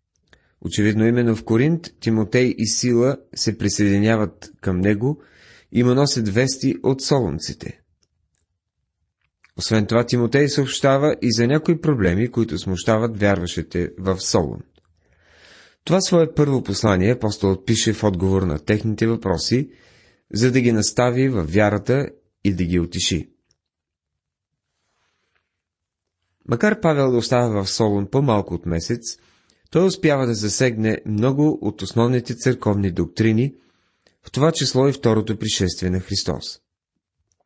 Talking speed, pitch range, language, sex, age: 125 wpm, 95-125 Hz, Bulgarian, male, 30-49